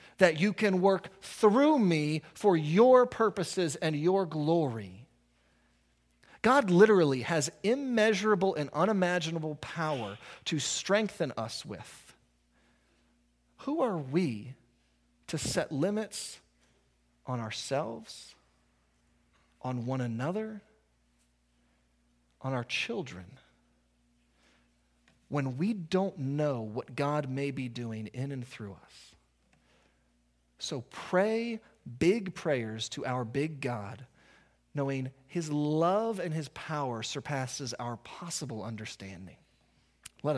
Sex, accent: male, American